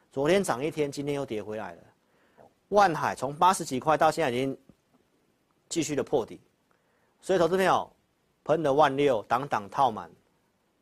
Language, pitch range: Chinese, 120-160 Hz